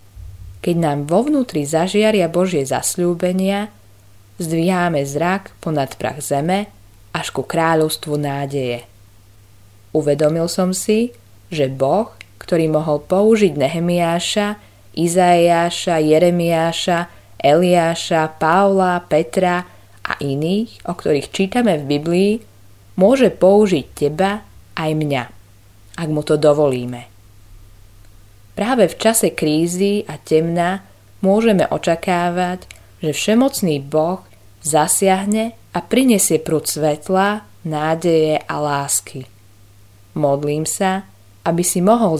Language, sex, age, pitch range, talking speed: Slovak, female, 20-39, 120-180 Hz, 100 wpm